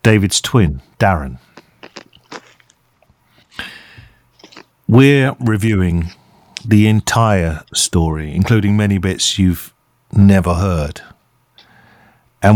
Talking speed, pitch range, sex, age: 70 wpm, 90-110 Hz, male, 50-69